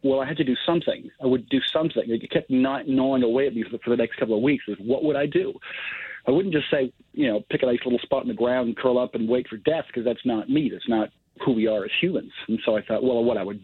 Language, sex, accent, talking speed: English, male, American, 300 wpm